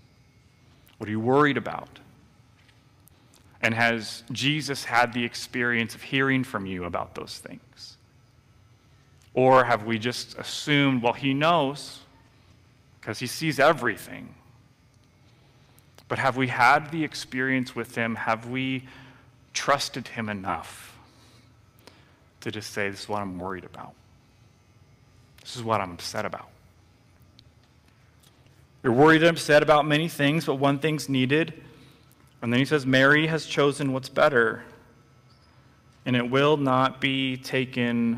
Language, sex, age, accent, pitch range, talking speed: English, male, 30-49, American, 115-140 Hz, 135 wpm